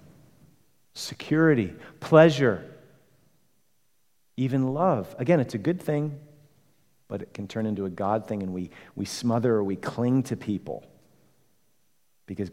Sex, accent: male, American